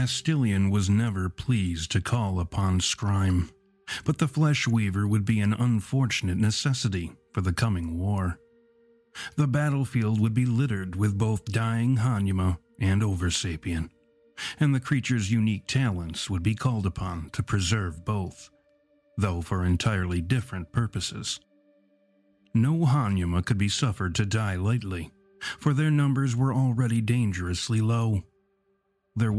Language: English